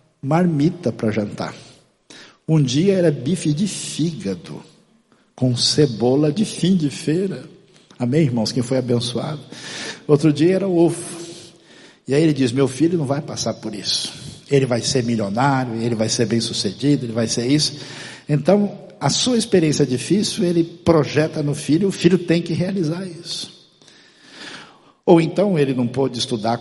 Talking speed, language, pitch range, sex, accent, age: 160 wpm, Portuguese, 130-170 Hz, male, Brazilian, 60-79